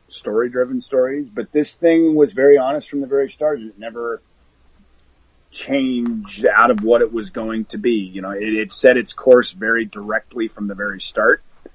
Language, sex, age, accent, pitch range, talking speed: English, male, 30-49, American, 100-145 Hz, 185 wpm